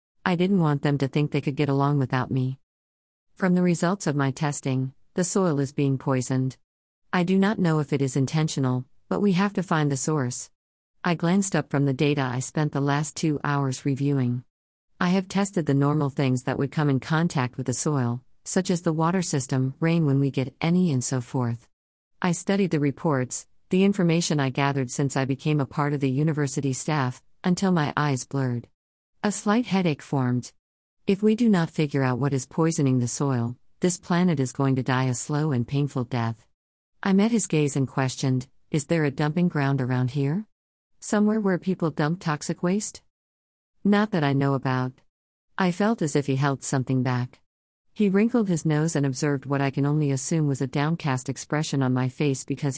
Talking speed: 200 wpm